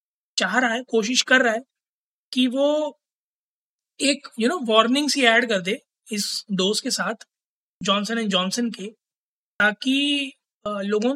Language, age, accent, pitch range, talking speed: Hindi, 20-39, native, 210-265 Hz, 160 wpm